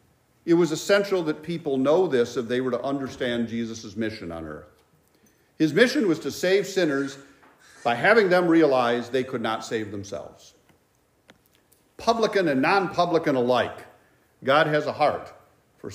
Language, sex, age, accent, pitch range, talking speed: English, male, 50-69, American, 125-170 Hz, 150 wpm